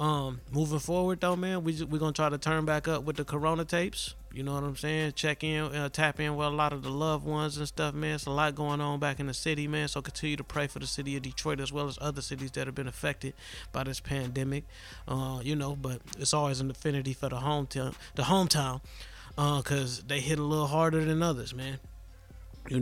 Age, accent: 20-39, American